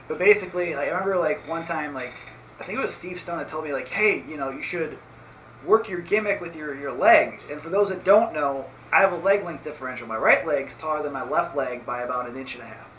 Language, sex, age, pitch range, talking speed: English, male, 30-49, 135-175 Hz, 265 wpm